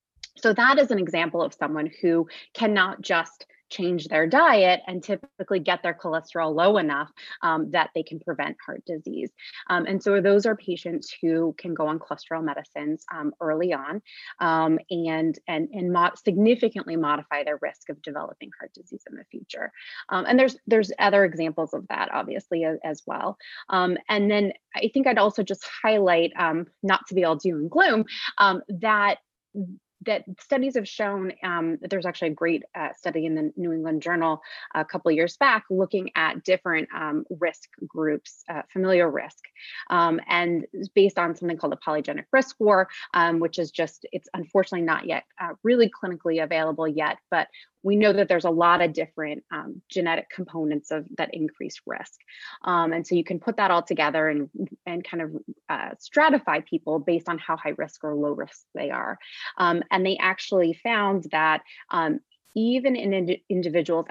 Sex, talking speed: female, 185 wpm